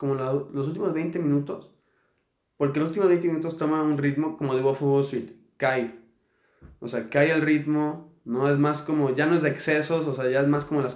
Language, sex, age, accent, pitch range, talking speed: Spanish, male, 20-39, Mexican, 130-165 Hz, 220 wpm